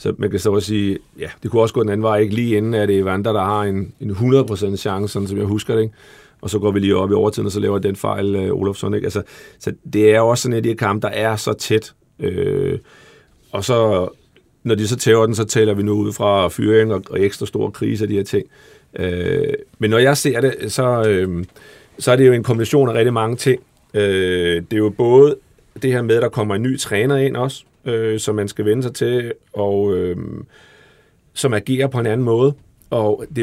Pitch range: 100-120 Hz